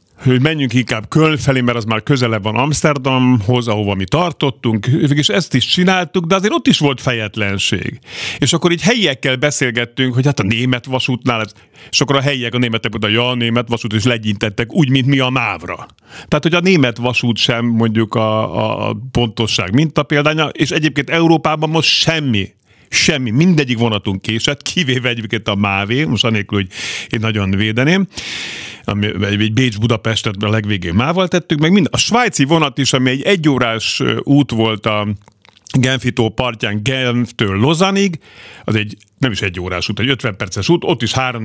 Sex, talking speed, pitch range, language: male, 170 wpm, 110-145 Hz, Hungarian